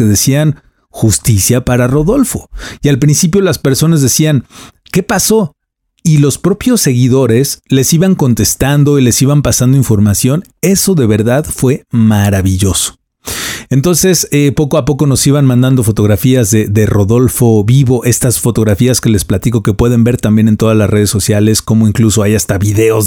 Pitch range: 110-140 Hz